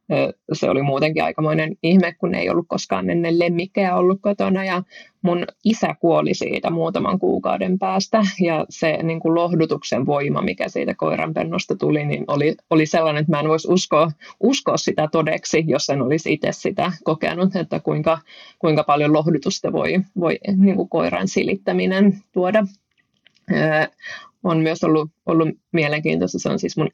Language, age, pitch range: Finnish, 20-39, 155-190 Hz